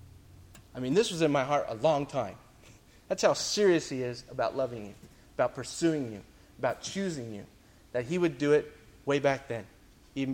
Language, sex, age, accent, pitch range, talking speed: English, male, 30-49, American, 105-155 Hz, 190 wpm